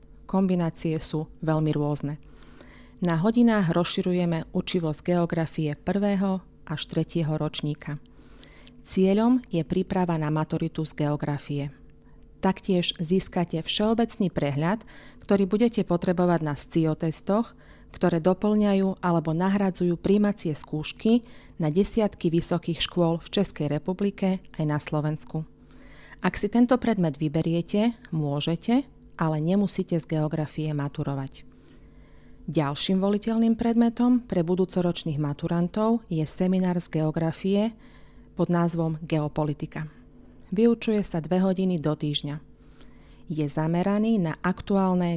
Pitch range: 155-195 Hz